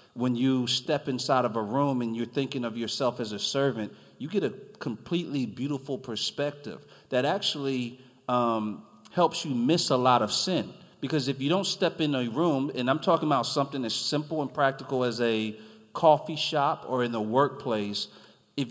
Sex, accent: male, American